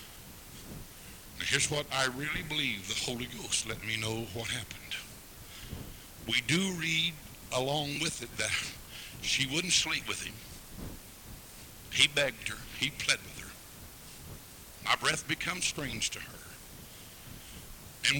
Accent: American